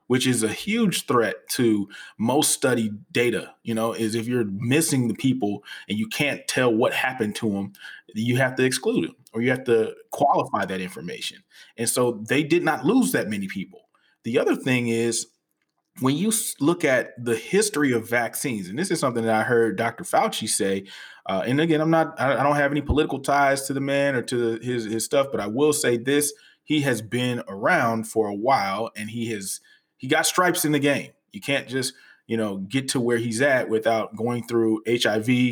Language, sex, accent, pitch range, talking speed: English, male, American, 115-150 Hz, 210 wpm